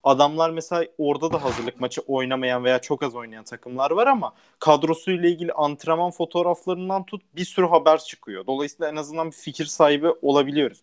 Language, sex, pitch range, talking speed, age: Turkish, male, 135-165 Hz, 165 wpm, 30-49